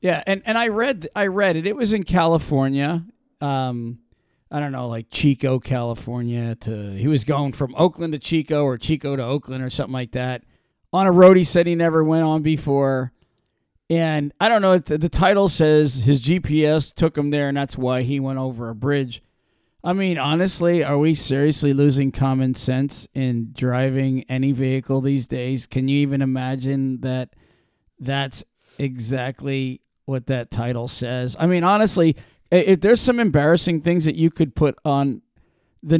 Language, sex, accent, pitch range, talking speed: English, male, American, 130-170 Hz, 175 wpm